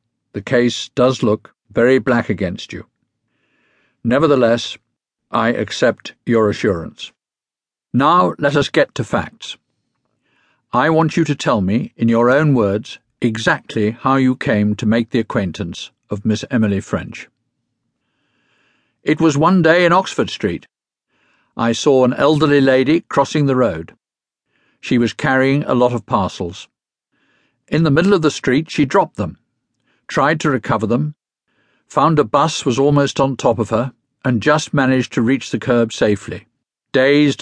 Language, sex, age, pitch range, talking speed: English, male, 50-69, 110-140 Hz, 150 wpm